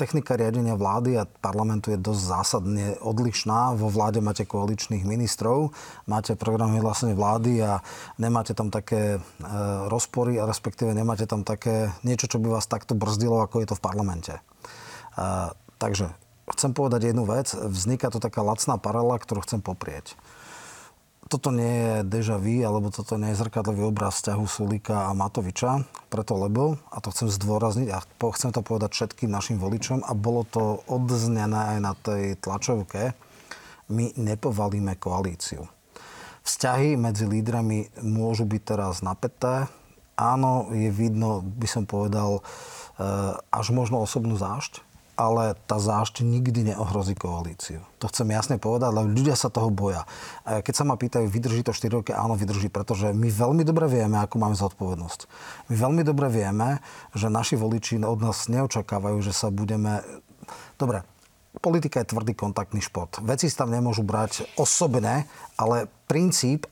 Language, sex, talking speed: Slovak, male, 150 wpm